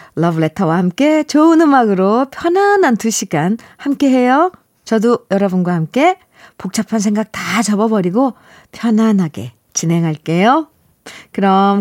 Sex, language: female, Korean